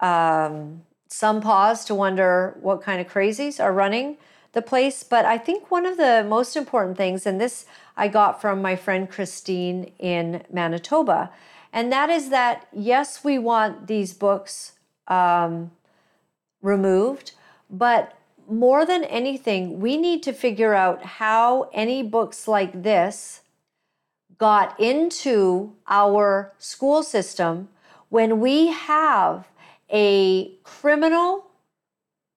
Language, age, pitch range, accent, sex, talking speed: English, 50-69, 200-290 Hz, American, female, 125 wpm